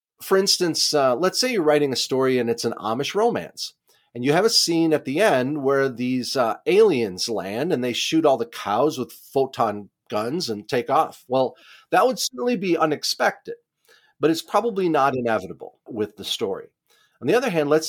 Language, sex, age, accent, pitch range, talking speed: English, male, 40-59, American, 120-170 Hz, 195 wpm